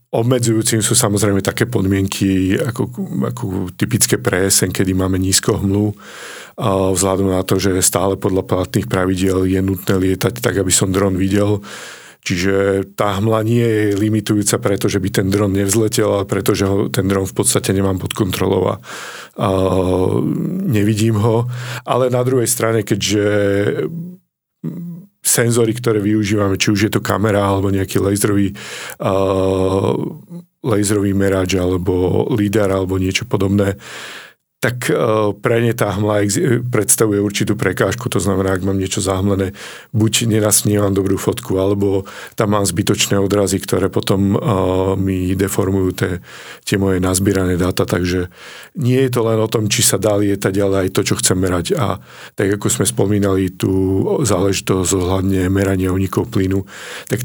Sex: male